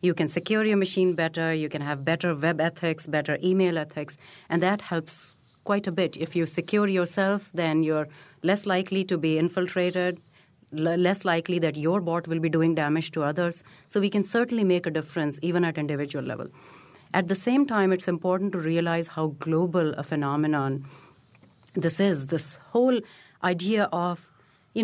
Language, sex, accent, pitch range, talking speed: English, female, Indian, 160-195 Hz, 175 wpm